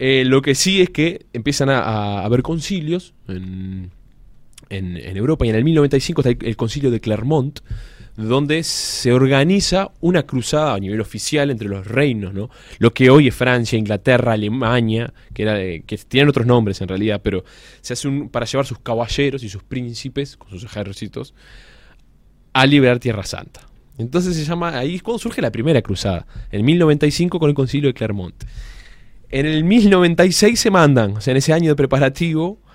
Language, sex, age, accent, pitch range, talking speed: Spanish, male, 20-39, Argentinian, 110-145 Hz, 185 wpm